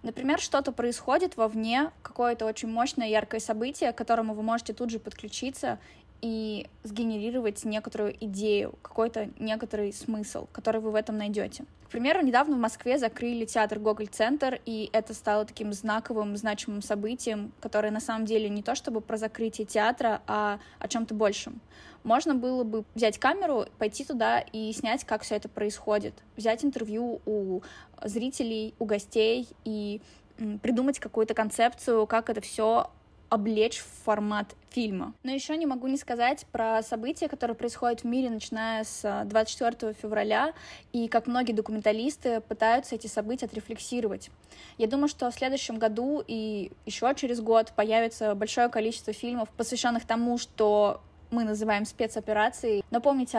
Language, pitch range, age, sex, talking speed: Russian, 215-240 Hz, 20-39, female, 150 wpm